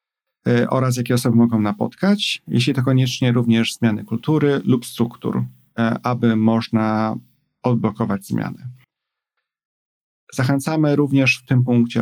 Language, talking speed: Polish, 110 wpm